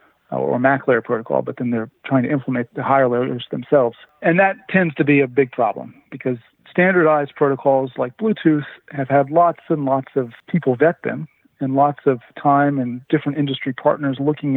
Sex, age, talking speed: male, 40-59, 185 wpm